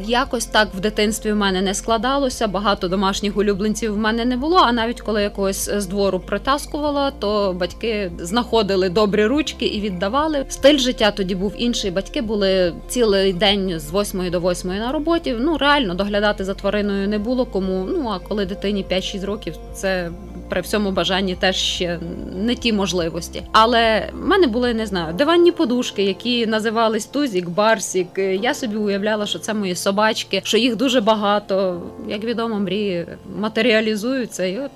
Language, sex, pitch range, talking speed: Ukrainian, female, 195-250 Hz, 165 wpm